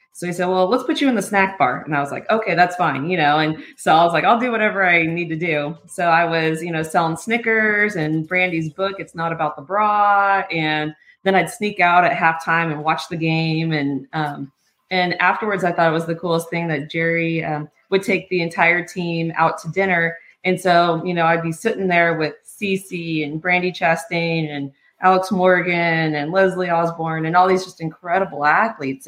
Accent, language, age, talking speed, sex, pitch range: American, English, 20-39, 215 wpm, female, 155-185 Hz